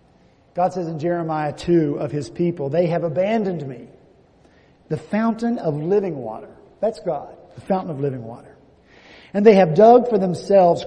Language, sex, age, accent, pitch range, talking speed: English, male, 50-69, American, 165-220 Hz, 165 wpm